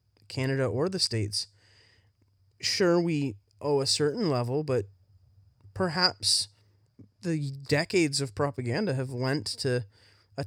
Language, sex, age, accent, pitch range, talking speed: English, male, 20-39, American, 100-150 Hz, 115 wpm